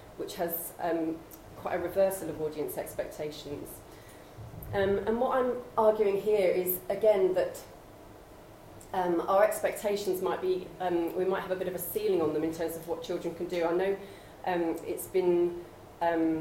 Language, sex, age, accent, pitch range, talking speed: English, female, 30-49, British, 165-190 Hz, 170 wpm